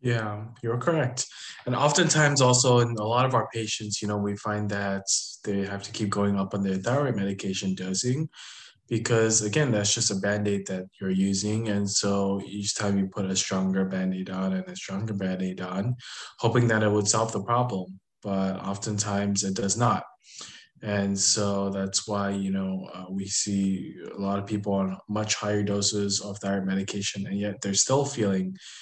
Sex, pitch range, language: male, 100-110 Hz, English